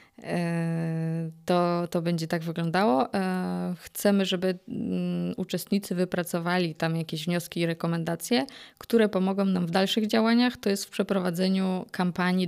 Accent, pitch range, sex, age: native, 165-190 Hz, female, 20-39